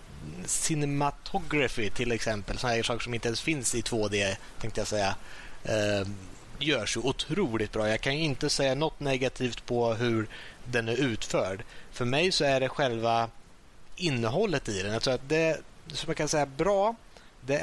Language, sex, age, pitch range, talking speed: Swedish, male, 30-49, 110-140 Hz, 170 wpm